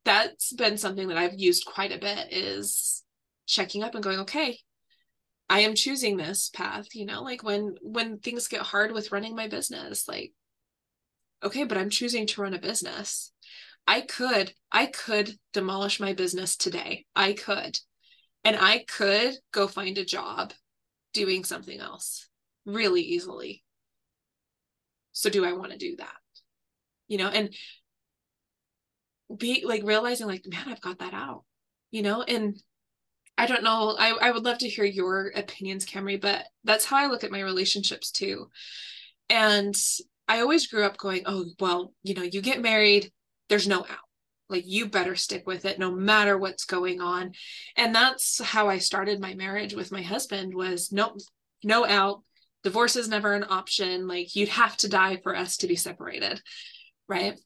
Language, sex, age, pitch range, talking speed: English, female, 20-39, 190-230 Hz, 170 wpm